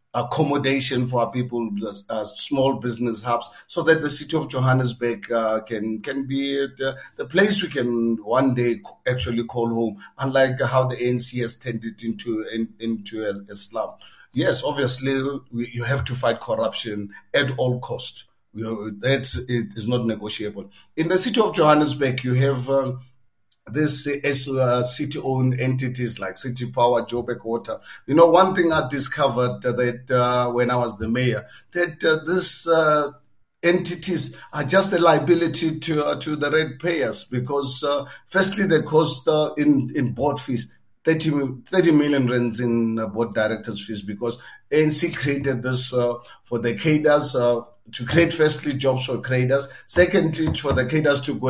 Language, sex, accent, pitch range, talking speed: English, male, South African, 120-150 Hz, 165 wpm